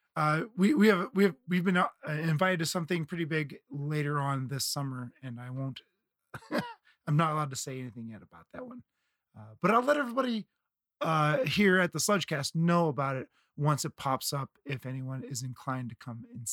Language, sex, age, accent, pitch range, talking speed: English, male, 30-49, American, 135-175 Hz, 195 wpm